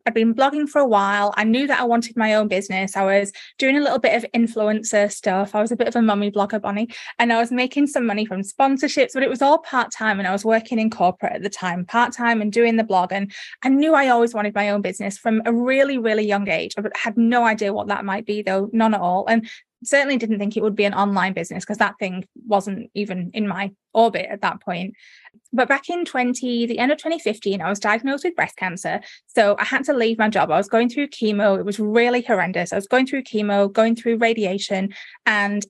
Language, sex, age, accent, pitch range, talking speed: English, female, 20-39, British, 200-245 Hz, 245 wpm